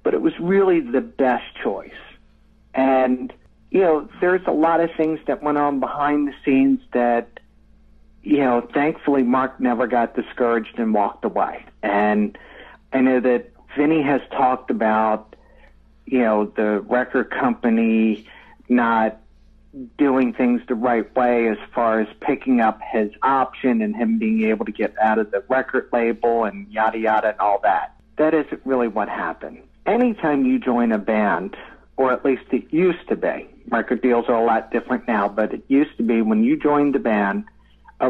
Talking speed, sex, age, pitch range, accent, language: 175 wpm, male, 50-69, 110-140 Hz, American, English